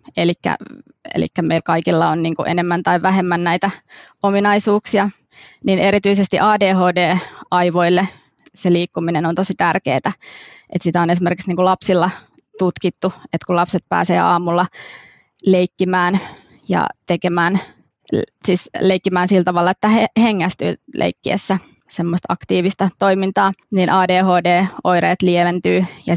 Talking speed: 110 wpm